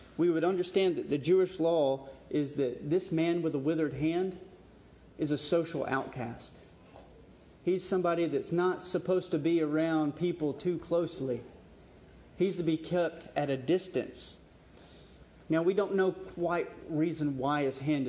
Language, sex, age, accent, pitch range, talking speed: English, male, 30-49, American, 135-170 Hz, 155 wpm